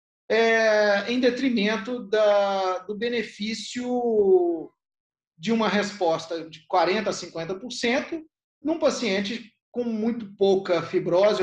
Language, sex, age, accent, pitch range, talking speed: Portuguese, male, 40-59, Brazilian, 180-245 Hz, 90 wpm